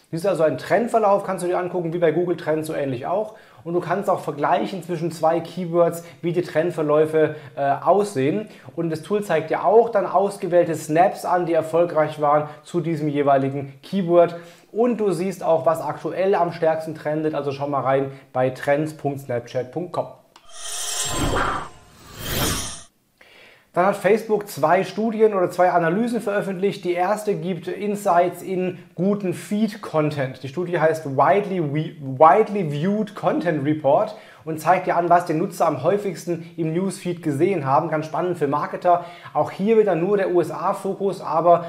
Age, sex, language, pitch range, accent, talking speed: 30-49, male, German, 150-185 Hz, German, 155 wpm